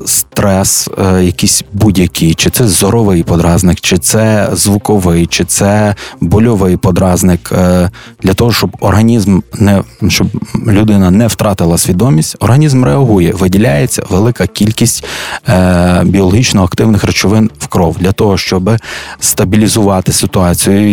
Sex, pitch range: male, 90-105 Hz